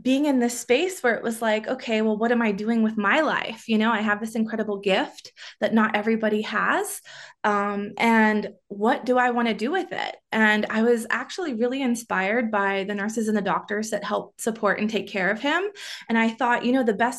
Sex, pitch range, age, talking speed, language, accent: female, 205-245 Hz, 20-39, 225 wpm, English, American